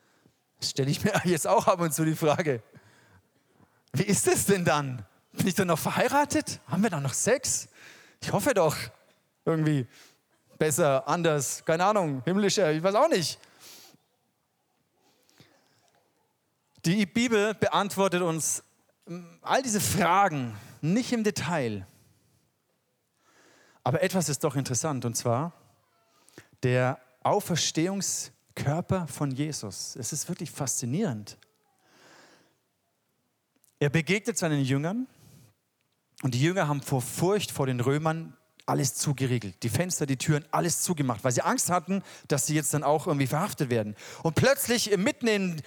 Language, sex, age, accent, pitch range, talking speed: German, male, 30-49, German, 135-190 Hz, 130 wpm